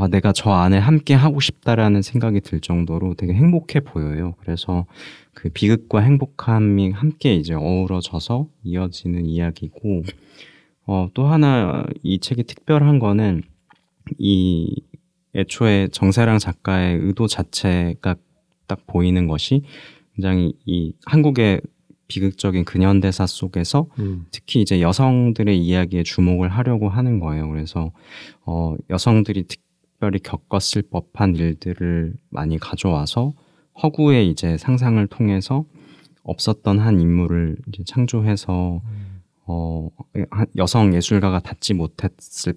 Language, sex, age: Korean, male, 20-39